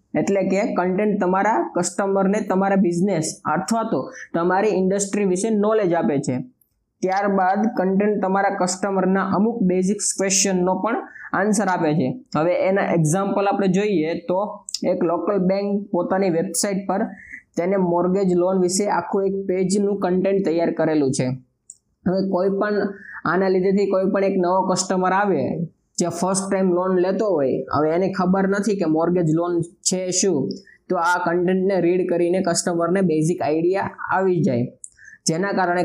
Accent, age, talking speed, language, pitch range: native, 20-39, 120 wpm, Gujarati, 175-200 Hz